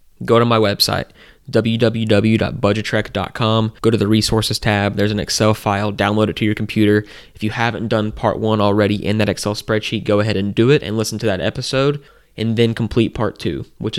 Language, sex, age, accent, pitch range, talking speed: English, male, 20-39, American, 105-115 Hz, 195 wpm